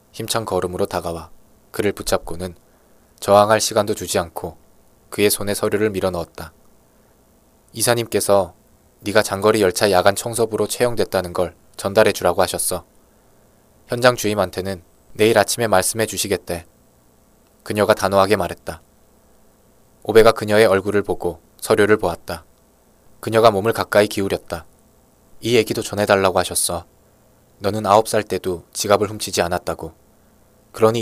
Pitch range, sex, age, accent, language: 90-110 Hz, male, 20-39, native, Korean